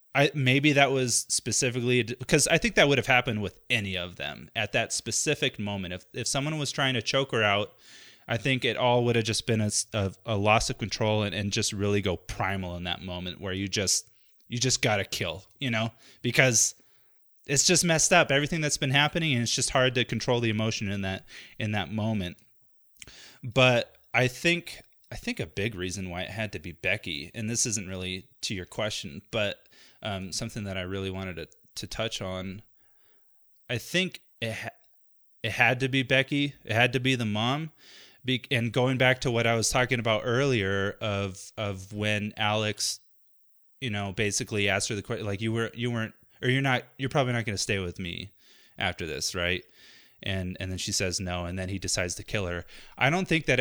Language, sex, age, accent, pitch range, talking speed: English, male, 30-49, American, 100-130 Hz, 210 wpm